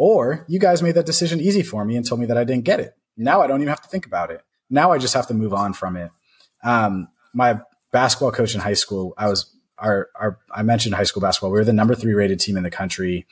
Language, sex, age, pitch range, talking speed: English, male, 30-49, 100-140 Hz, 260 wpm